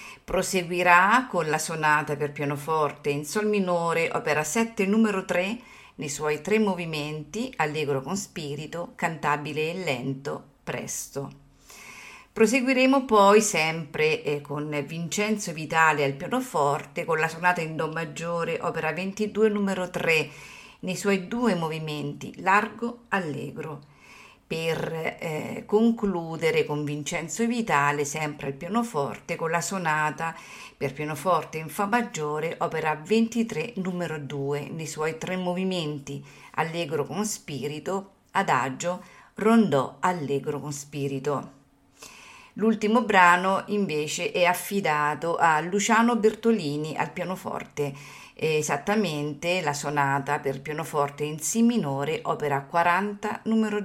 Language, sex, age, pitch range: Italian, female, 50-69, 150-200 Hz